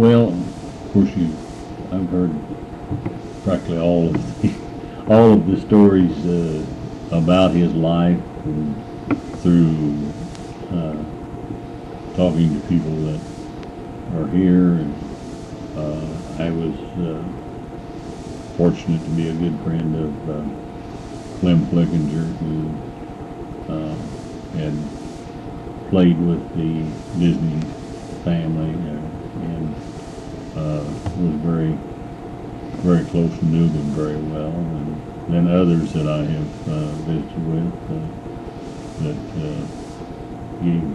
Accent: American